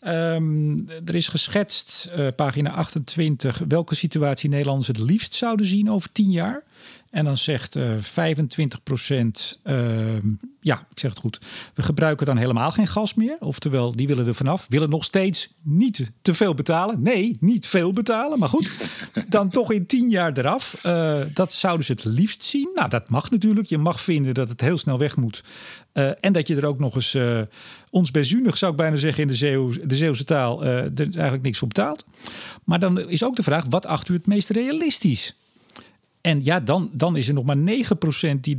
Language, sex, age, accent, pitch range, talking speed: Dutch, male, 40-59, Dutch, 140-190 Hz, 200 wpm